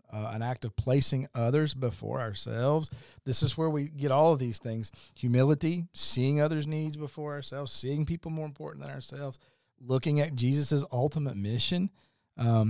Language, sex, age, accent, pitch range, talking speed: English, male, 40-59, American, 125-150 Hz, 165 wpm